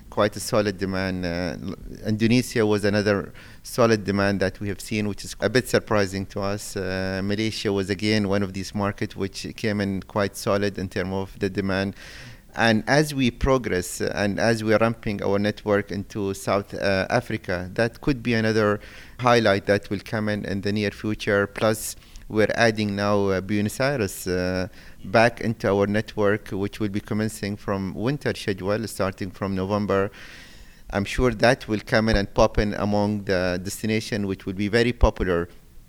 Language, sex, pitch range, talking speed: English, male, 100-115 Hz, 175 wpm